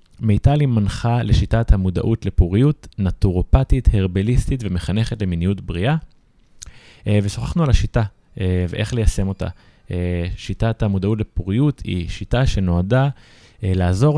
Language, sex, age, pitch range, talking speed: Hebrew, male, 20-39, 95-115 Hz, 95 wpm